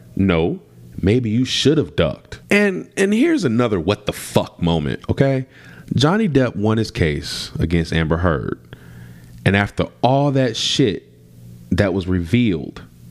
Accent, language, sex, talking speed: American, English, male, 140 wpm